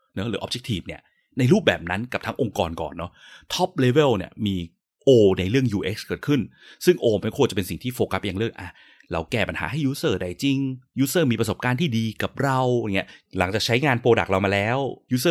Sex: male